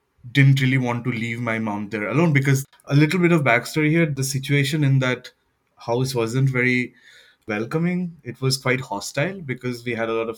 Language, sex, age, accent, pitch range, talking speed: English, male, 20-39, Indian, 110-135 Hz, 195 wpm